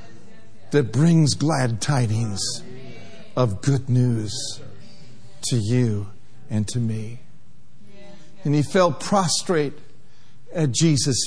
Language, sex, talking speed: English, male, 95 wpm